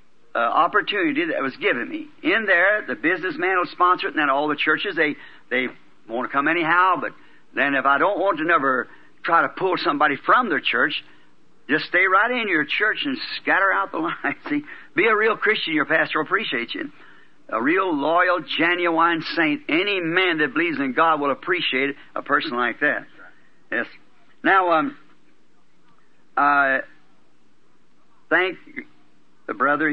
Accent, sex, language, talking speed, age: American, male, English, 170 wpm, 50-69